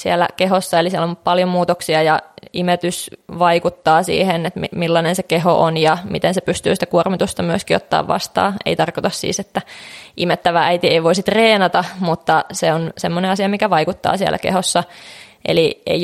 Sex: female